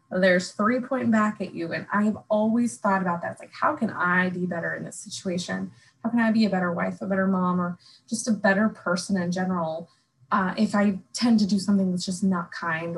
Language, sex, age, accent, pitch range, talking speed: English, female, 20-39, American, 180-225 Hz, 230 wpm